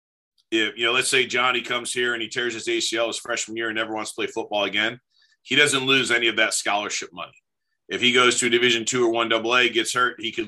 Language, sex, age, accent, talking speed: English, male, 30-49, American, 260 wpm